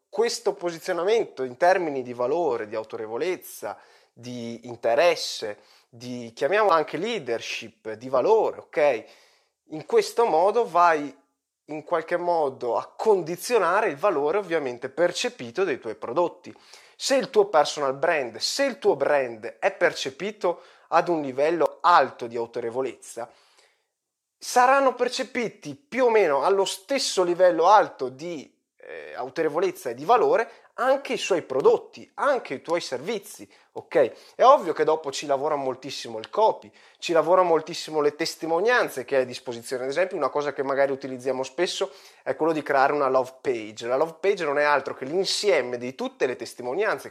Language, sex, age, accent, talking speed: Italian, male, 20-39, native, 150 wpm